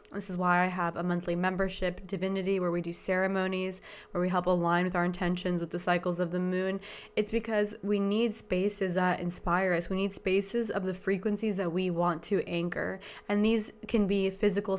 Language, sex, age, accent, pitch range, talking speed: English, female, 20-39, American, 180-195 Hz, 205 wpm